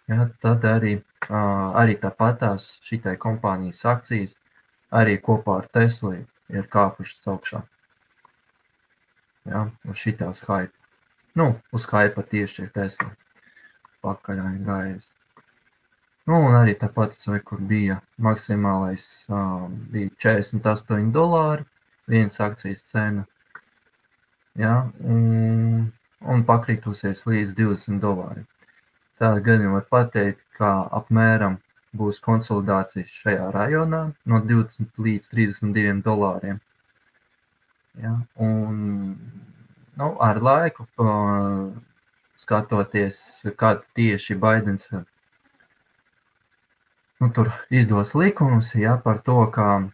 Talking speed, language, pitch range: 95 wpm, English, 100-115 Hz